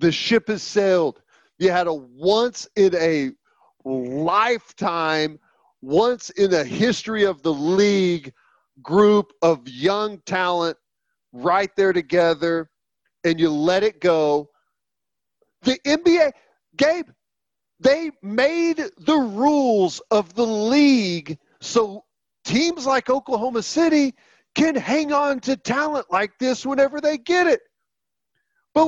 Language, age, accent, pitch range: English, 40-59, American, 170-255 Hz